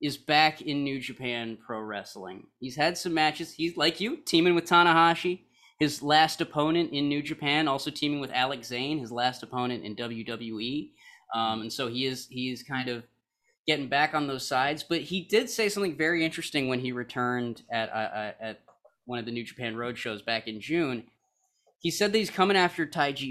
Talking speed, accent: 200 wpm, American